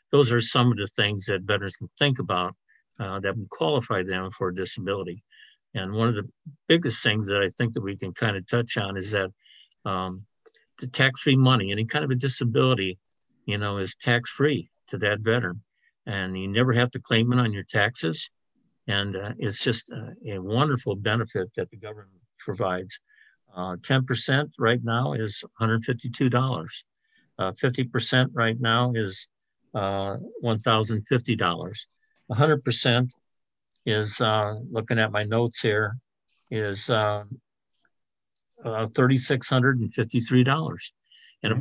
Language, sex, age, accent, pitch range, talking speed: English, male, 60-79, American, 100-125 Hz, 150 wpm